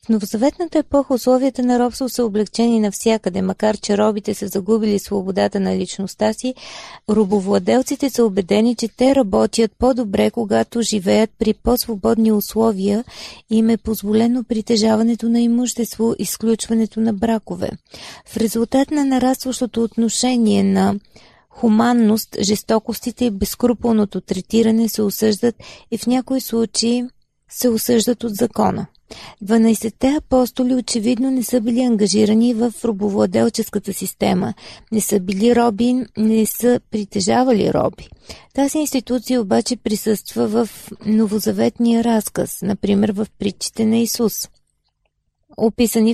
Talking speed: 120 wpm